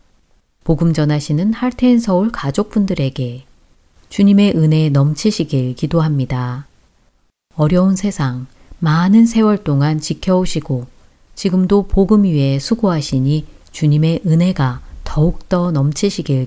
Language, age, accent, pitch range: Korean, 40-59, native, 140-195 Hz